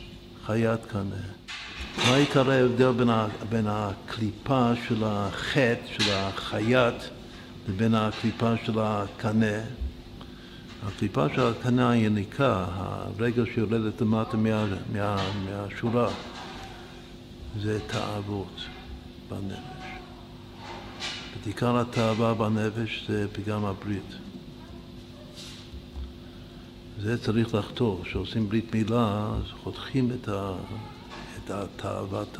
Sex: male